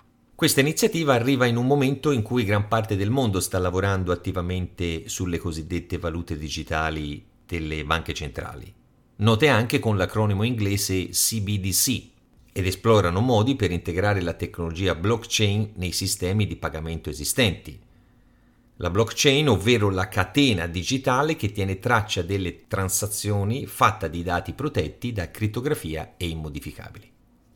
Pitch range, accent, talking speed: 85-120 Hz, native, 130 wpm